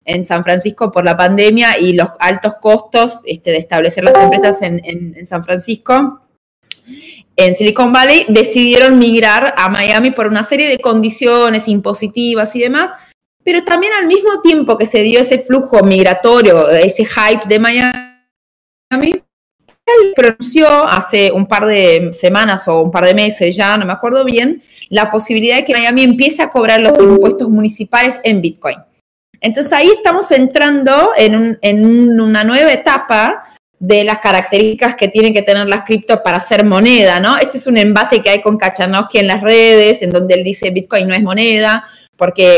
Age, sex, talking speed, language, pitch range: 20-39, female, 170 wpm, Spanish, 190-250 Hz